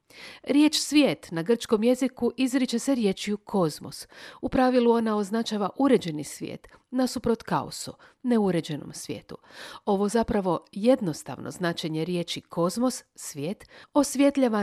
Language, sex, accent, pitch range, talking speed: Croatian, female, native, 185-245 Hz, 115 wpm